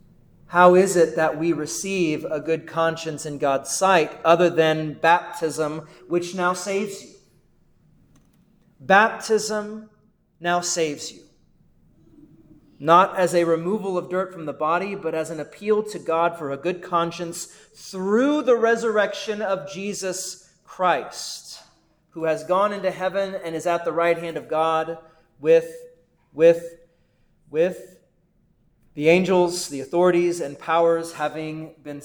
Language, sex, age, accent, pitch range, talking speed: English, male, 30-49, American, 160-195 Hz, 135 wpm